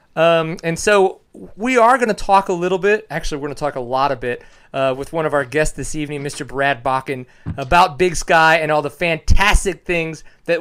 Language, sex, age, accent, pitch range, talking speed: English, male, 30-49, American, 145-180 Hz, 225 wpm